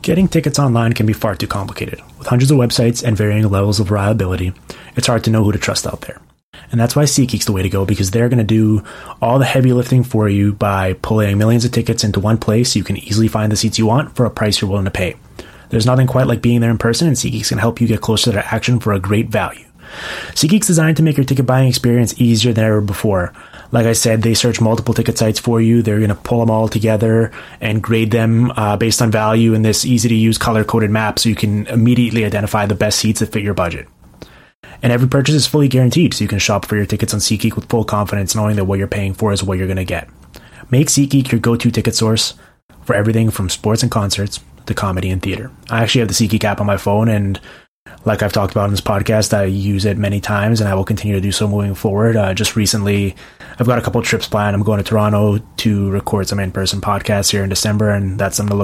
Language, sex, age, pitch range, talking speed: English, male, 20-39, 100-115 Hz, 255 wpm